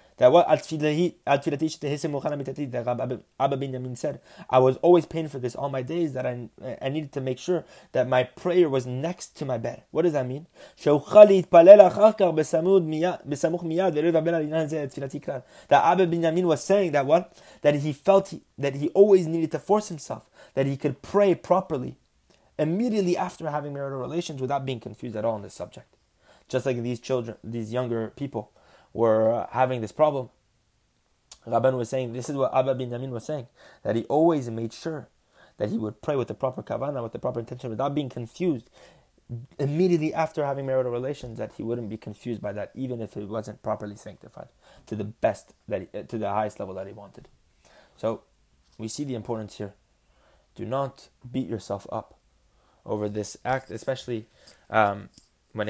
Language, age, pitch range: English, 20-39, 115-160 Hz